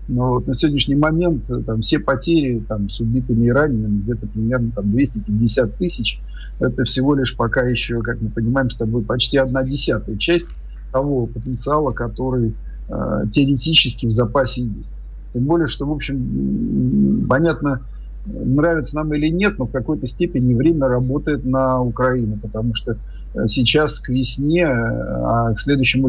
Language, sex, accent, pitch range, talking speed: Russian, male, native, 115-140 Hz, 145 wpm